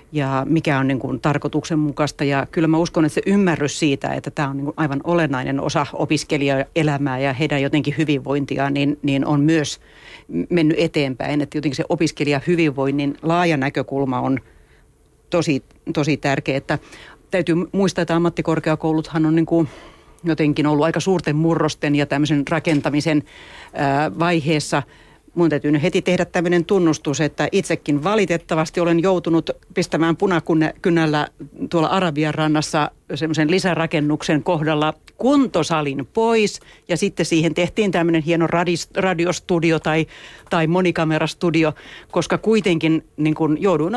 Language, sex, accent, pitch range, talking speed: Finnish, female, native, 145-170 Hz, 130 wpm